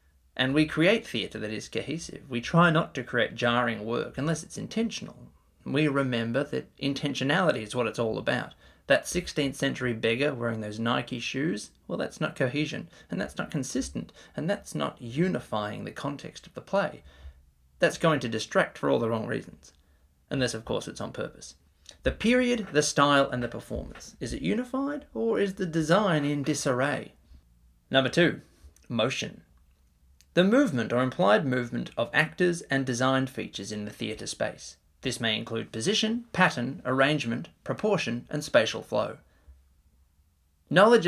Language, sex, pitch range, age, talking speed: English, male, 110-150 Hz, 20-39, 160 wpm